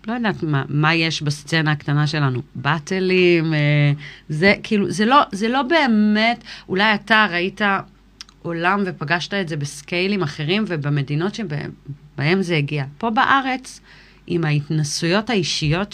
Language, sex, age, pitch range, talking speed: Hebrew, female, 40-59, 150-180 Hz, 130 wpm